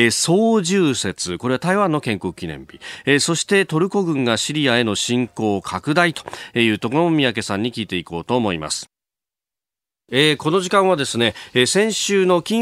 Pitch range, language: 105-165 Hz, Japanese